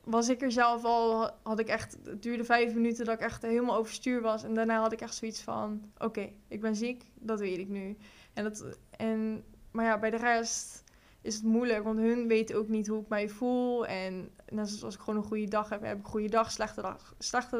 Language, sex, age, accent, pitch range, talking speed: Dutch, female, 10-29, Dutch, 215-230 Hz, 240 wpm